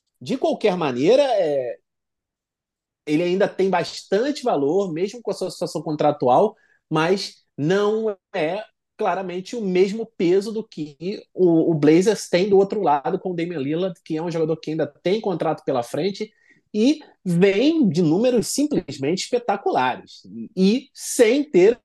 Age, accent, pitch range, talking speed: 30-49, Brazilian, 160-210 Hz, 145 wpm